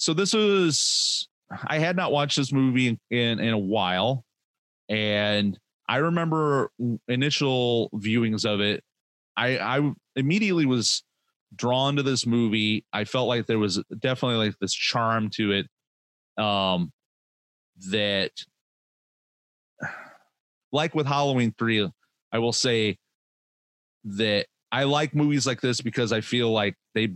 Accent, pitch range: American, 105-130 Hz